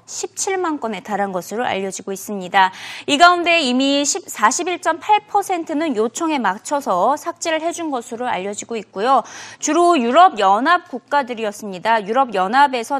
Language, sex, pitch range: Korean, female, 215-320 Hz